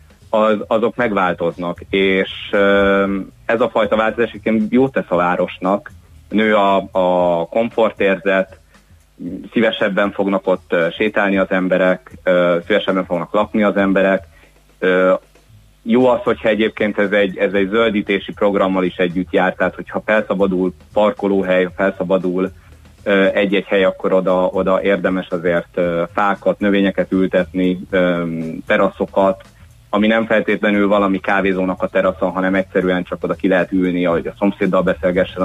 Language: Hungarian